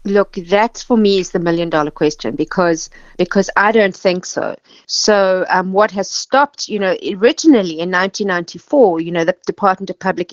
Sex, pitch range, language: female, 175-215 Hz, English